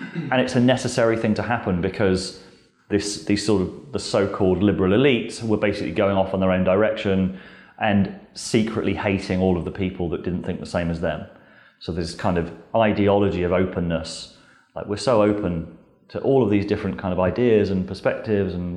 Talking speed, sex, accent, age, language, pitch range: 190 wpm, male, British, 30-49, English, 85-105 Hz